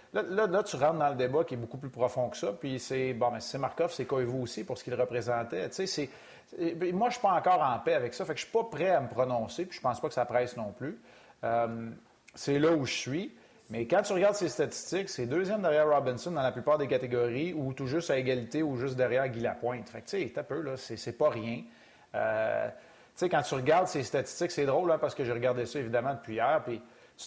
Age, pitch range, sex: 30-49, 125-170 Hz, male